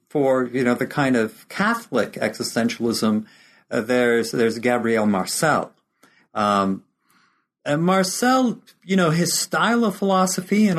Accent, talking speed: American, 130 wpm